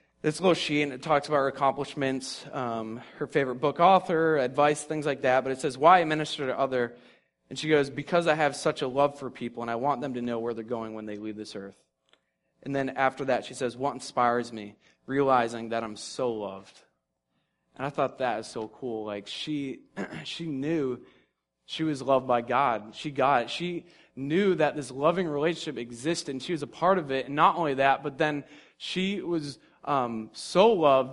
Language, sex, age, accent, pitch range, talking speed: English, male, 20-39, American, 120-160 Hz, 210 wpm